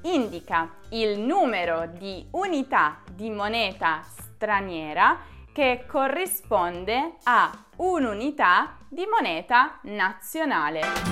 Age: 20-39